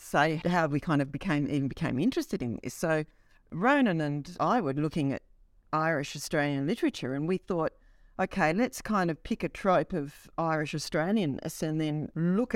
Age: 50-69